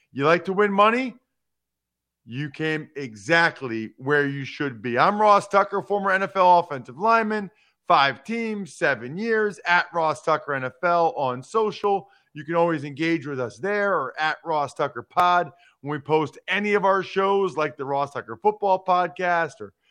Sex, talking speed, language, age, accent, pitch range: male, 165 wpm, English, 40-59, American, 145-195 Hz